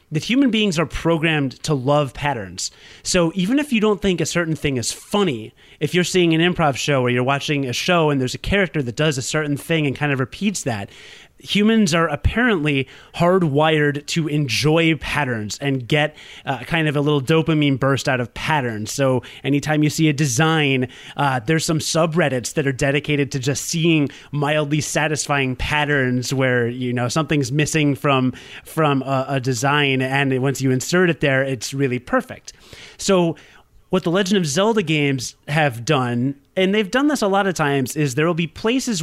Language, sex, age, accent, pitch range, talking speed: English, male, 30-49, American, 135-170 Hz, 190 wpm